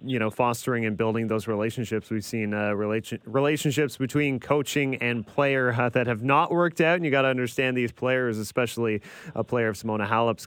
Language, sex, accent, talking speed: English, male, American, 200 wpm